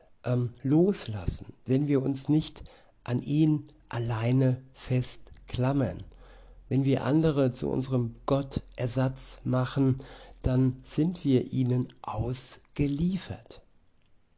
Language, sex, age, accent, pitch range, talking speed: German, male, 60-79, German, 120-140 Hz, 90 wpm